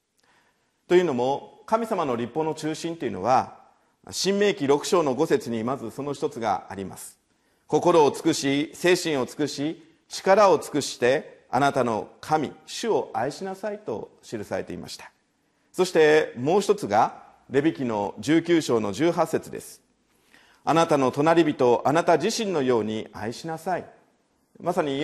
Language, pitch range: Japanese, 135-180 Hz